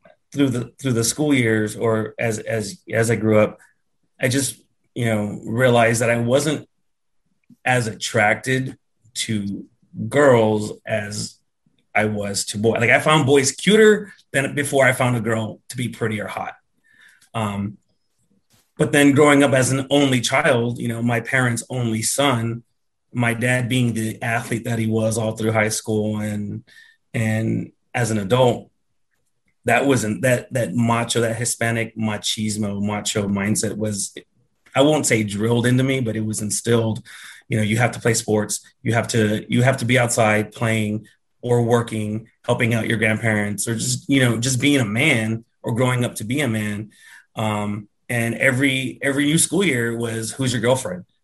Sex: male